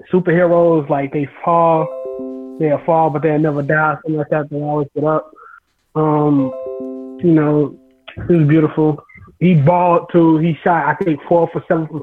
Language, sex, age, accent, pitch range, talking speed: English, male, 20-39, American, 145-170 Hz, 165 wpm